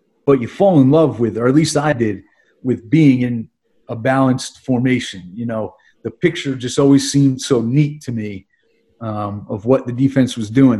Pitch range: 115-145 Hz